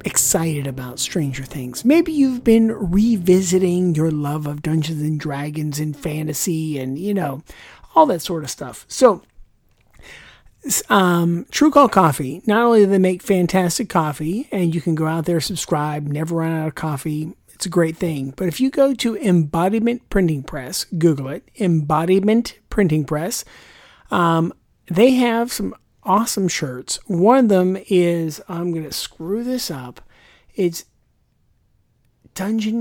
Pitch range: 150-195 Hz